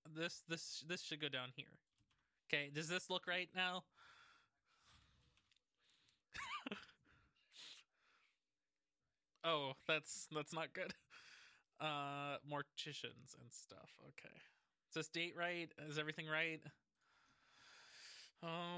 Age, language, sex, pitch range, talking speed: 20-39, English, male, 150-180 Hz, 100 wpm